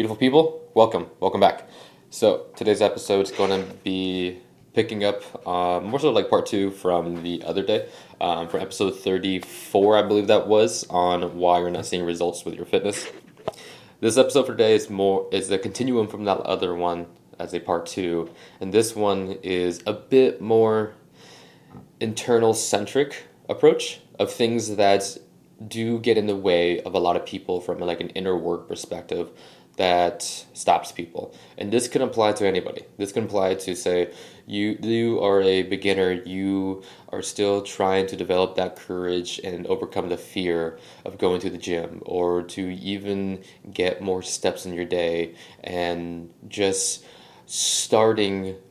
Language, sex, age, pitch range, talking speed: English, male, 20-39, 90-105 Hz, 165 wpm